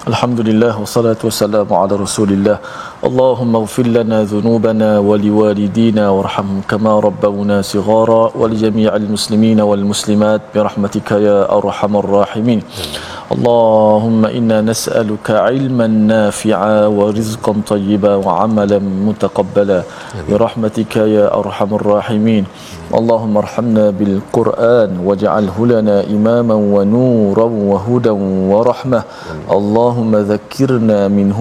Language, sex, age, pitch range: Malayalam, male, 40-59, 100-110 Hz